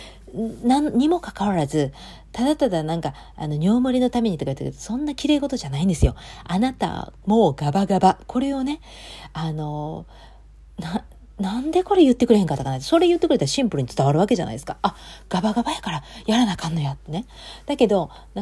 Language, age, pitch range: Japanese, 40-59, 155-240 Hz